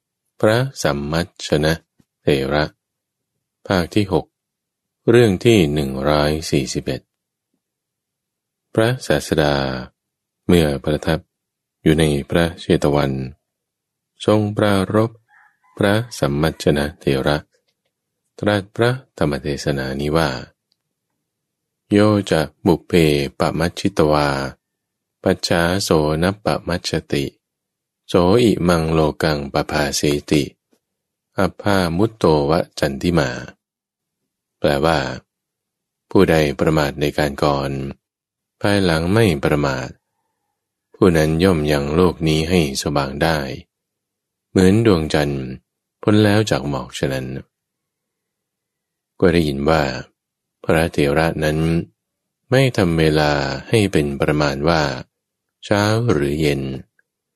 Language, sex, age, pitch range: English, male, 20-39, 75-100 Hz